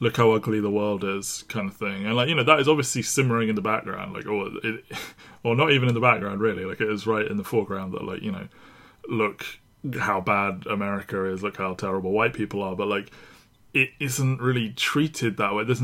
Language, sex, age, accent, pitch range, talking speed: English, male, 20-39, British, 100-120 Hz, 225 wpm